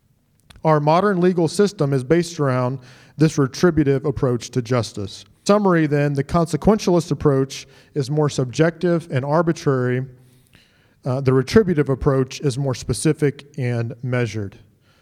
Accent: American